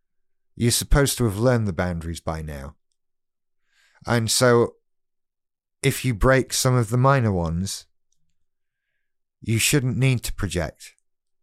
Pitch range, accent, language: 90-130 Hz, British, English